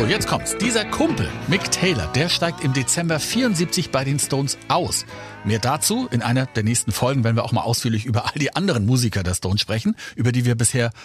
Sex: male